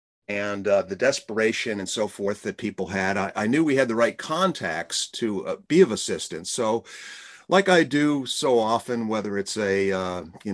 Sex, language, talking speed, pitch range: male, English, 195 wpm, 100-120 Hz